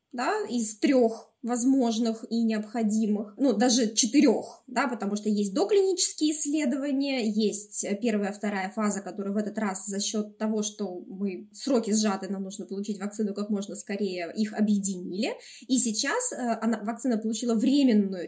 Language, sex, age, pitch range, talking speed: Russian, female, 20-39, 215-265 Hz, 150 wpm